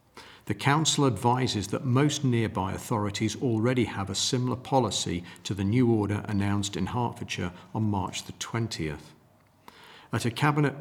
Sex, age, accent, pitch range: male, 50-69, British, 95-125 Hz